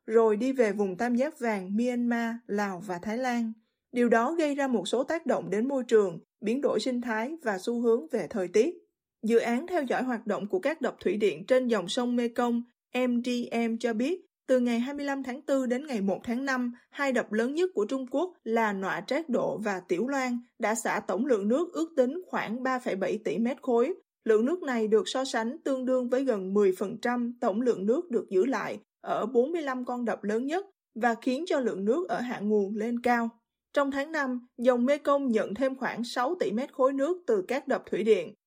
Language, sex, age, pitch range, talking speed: Vietnamese, female, 20-39, 225-270 Hz, 215 wpm